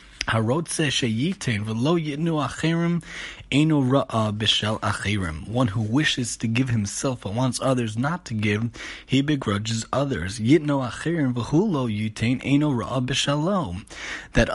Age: 20-39